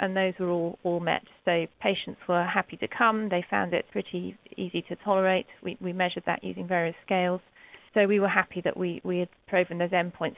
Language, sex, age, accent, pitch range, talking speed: English, female, 40-59, British, 180-205 Hz, 215 wpm